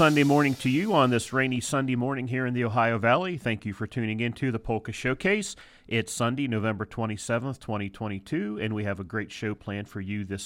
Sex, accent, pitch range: male, American, 105-130 Hz